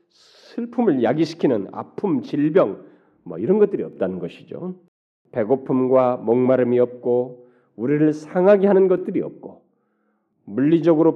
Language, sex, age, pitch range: Korean, male, 40-59, 115-170 Hz